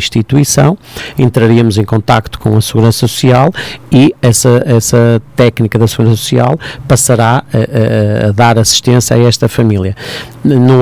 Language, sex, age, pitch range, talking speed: Portuguese, male, 50-69, 110-125 Hz, 140 wpm